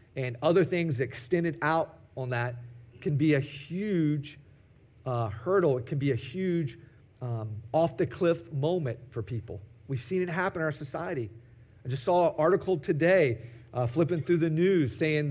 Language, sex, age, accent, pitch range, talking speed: English, male, 40-59, American, 125-170 Hz, 165 wpm